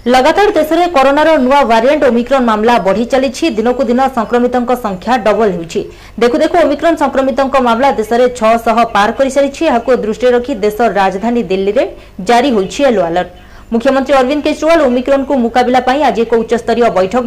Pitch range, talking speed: 220-270 Hz, 155 wpm